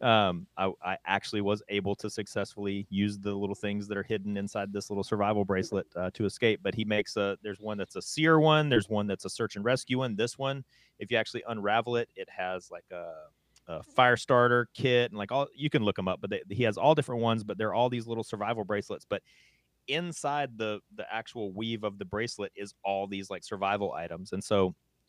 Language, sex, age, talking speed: English, male, 30-49, 230 wpm